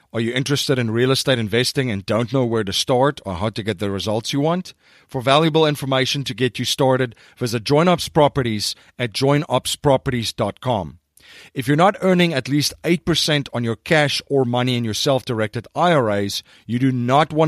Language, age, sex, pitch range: English, 40-59, male, 115-145 Hz